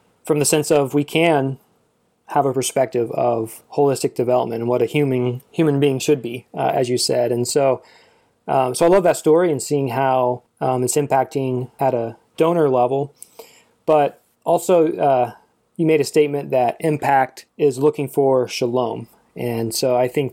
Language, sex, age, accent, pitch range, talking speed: English, male, 20-39, American, 125-145 Hz, 175 wpm